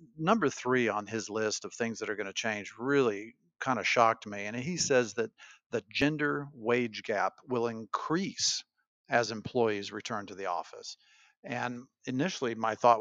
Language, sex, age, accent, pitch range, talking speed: English, male, 50-69, American, 110-135 Hz, 170 wpm